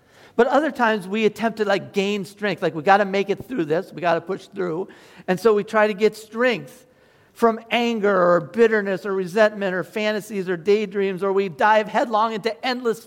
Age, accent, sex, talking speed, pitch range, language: 50-69, American, male, 205 wpm, 185-230 Hz, English